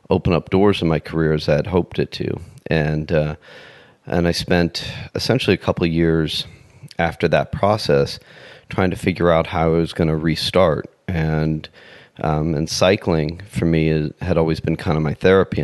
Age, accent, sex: 40-59, American, male